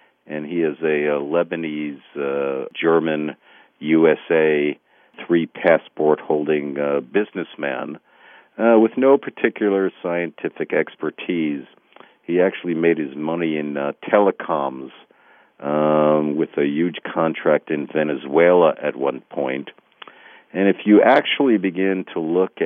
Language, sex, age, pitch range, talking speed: English, male, 50-69, 75-85 Hz, 105 wpm